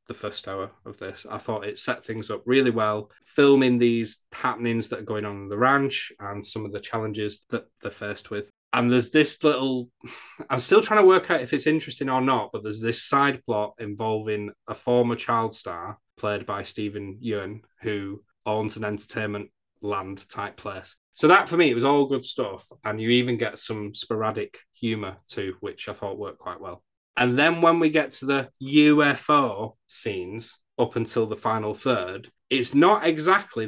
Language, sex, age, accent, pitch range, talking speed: English, male, 20-39, British, 105-130 Hz, 190 wpm